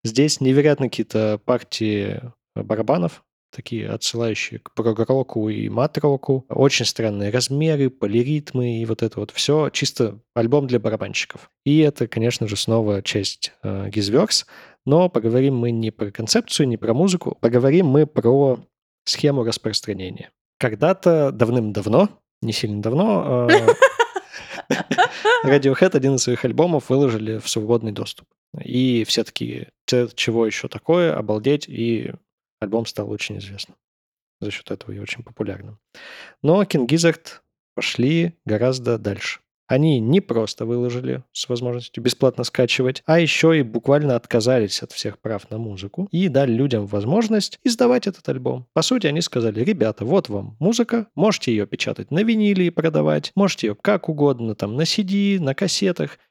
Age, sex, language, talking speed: 20-39, male, Russian, 140 wpm